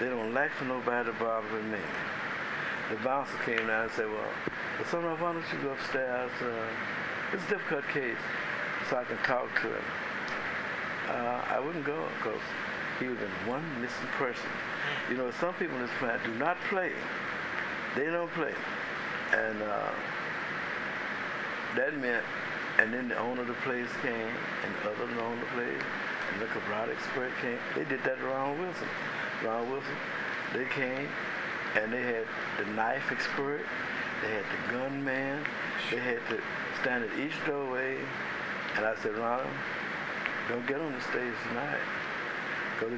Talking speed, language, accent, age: 170 wpm, English, American, 60-79